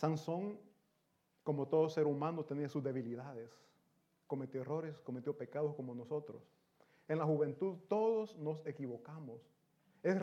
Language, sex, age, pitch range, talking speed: Italian, male, 30-49, 150-210 Hz, 125 wpm